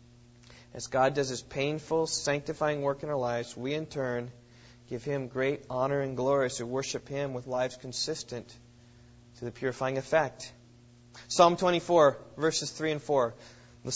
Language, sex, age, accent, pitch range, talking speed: English, male, 30-49, American, 120-170 Hz, 140 wpm